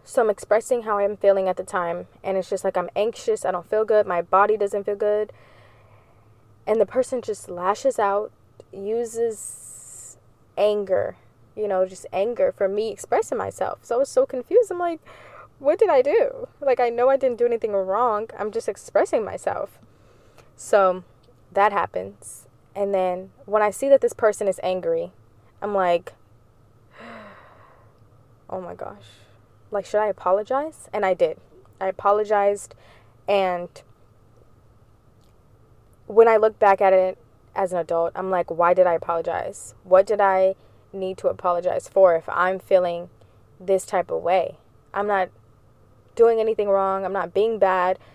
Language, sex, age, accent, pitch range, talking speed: English, female, 20-39, American, 165-215 Hz, 160 wpm